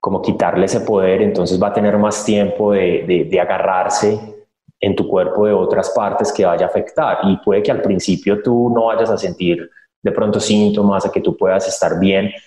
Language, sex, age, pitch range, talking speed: Spanish, male, 20-39, 95-140 Hz, 205 wpm